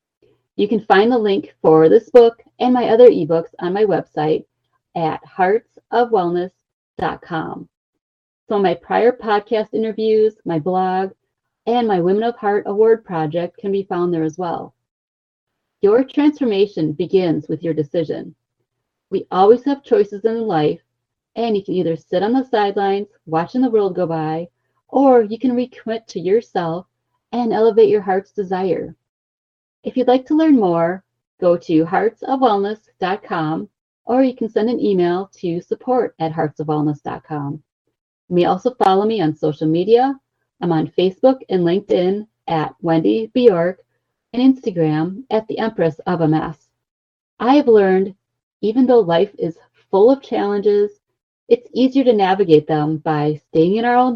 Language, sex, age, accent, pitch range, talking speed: English, female, 30-49, American, 165-230 Hz, 150 wpm